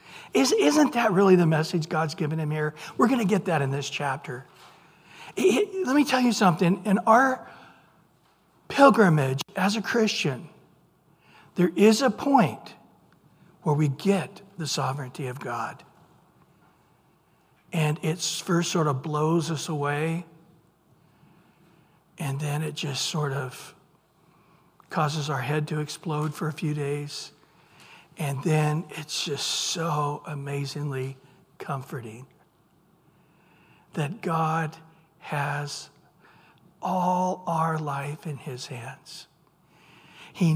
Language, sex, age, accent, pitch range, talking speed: English, male, 60-79, American, 150-190 Hz, 115 wpm